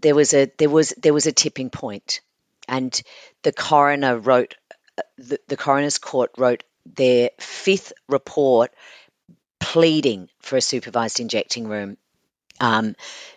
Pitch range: 115-145 Hz